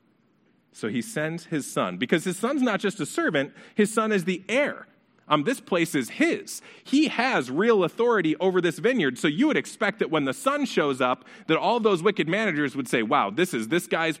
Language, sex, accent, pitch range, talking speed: English, male, American, 150-220 Hz, 215 wpm